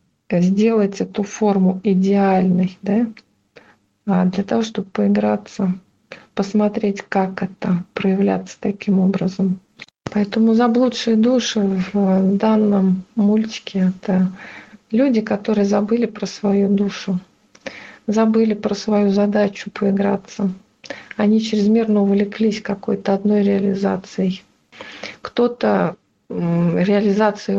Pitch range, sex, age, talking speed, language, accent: 185-210 Hz, female, 40-59, 90 wpm, Russian, native